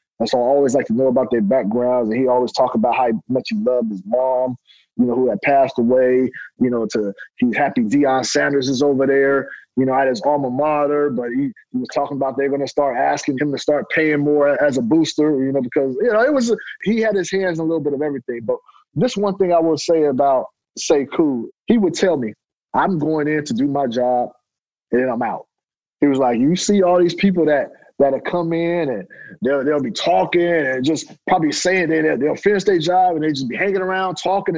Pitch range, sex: 135-195 Hz, male